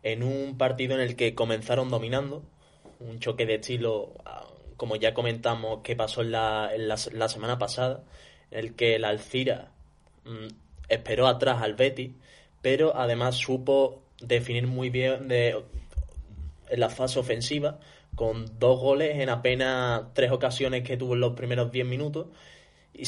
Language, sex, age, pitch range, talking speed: Spanish, male, 20-39, 115-130 Hz, 165 wpm